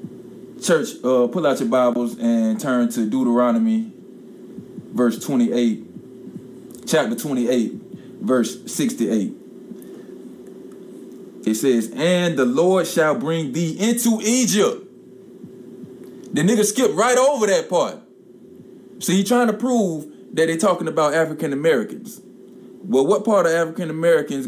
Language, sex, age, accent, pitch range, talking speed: English, male, 20-39, American, 130-195 Hz, 120 wpm